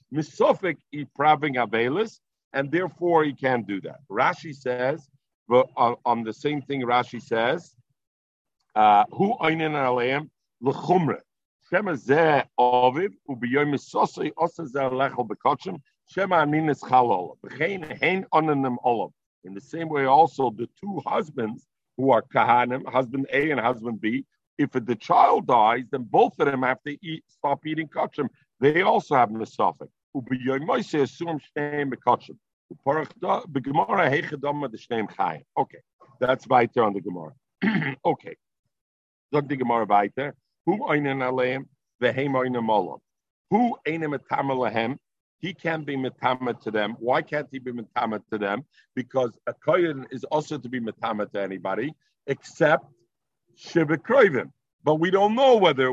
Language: English